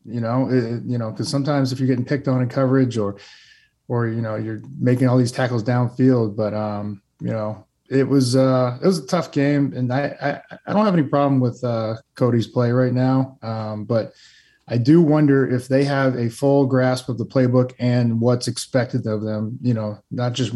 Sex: male